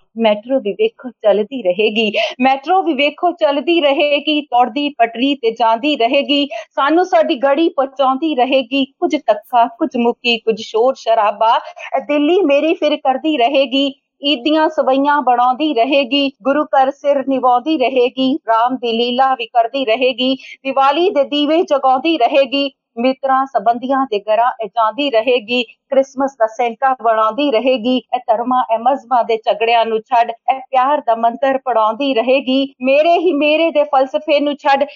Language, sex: Punjabi, female